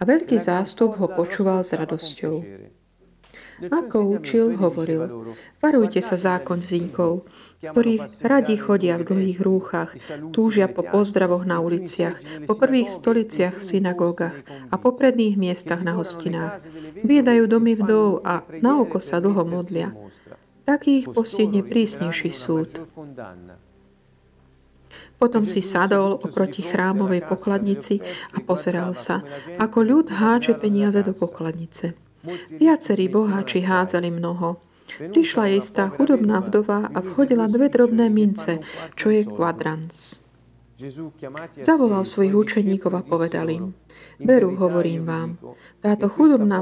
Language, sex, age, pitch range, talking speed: Slovak, female, 40-59, 170-215 Hz, 120 wpm